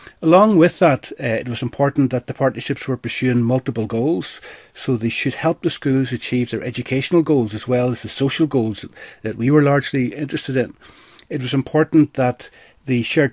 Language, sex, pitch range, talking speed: English, male, 120-150 Hz, 190 wpm